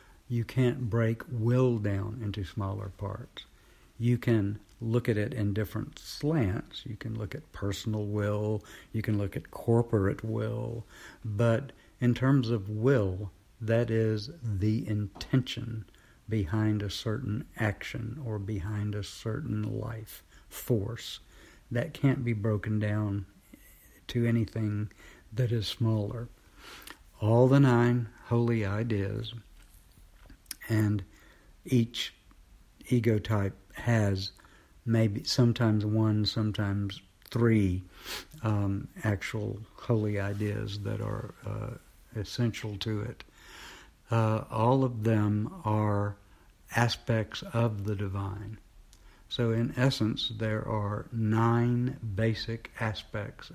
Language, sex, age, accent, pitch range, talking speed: English, male, 60-79, American, 100-115 Hz, 110 wpm